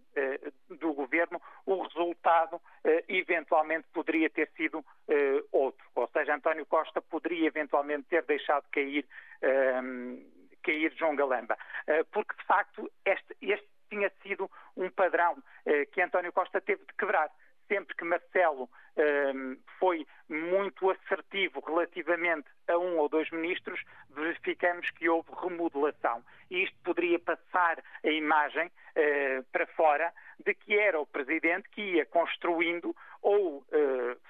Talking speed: 125 wpm